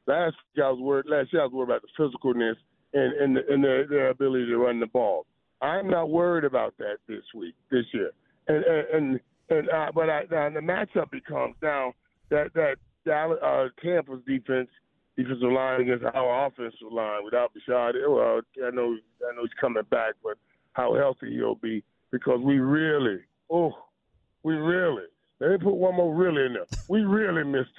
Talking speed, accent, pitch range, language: 190 wpm, American, 135-190 Hz, English